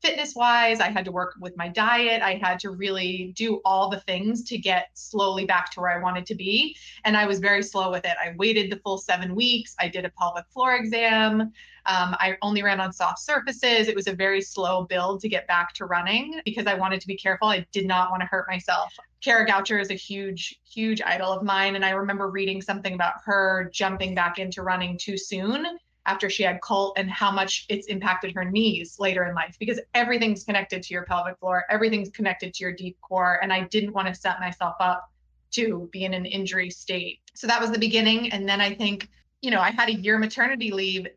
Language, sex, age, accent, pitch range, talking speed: English, female, 20-39, American, 185-220 Hz, 225 wpm